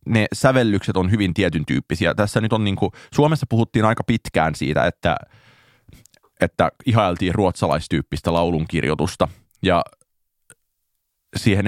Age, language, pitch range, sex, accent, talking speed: 30-49, Finnish, 85-105 Hz, male, native, 115 wpm